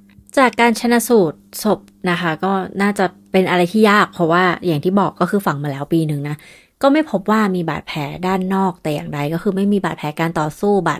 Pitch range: 165-205 Hz